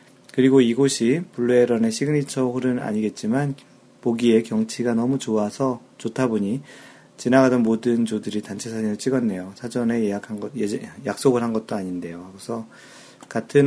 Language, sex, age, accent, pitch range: Korean, male, 40-59, native, 105-130 Hz